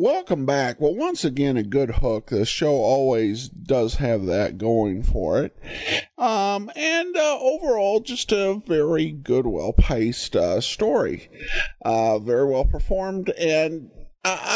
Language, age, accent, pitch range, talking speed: English, 50-69, American, 110-160 Hz, 145 wpm